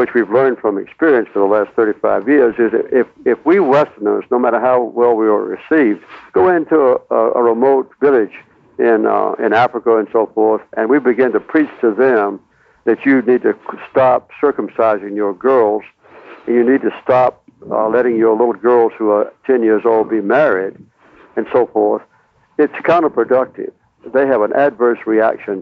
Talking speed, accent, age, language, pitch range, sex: 180 wpm, American, 60-79, English, 110-135 Hz, male